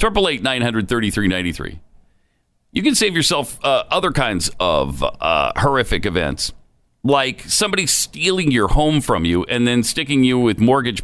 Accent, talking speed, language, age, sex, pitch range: American, 135 wpm, English, 40-59, male, 100-155 Hz